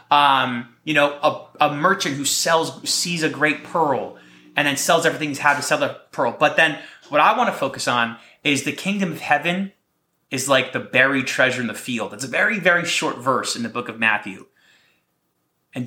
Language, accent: English, American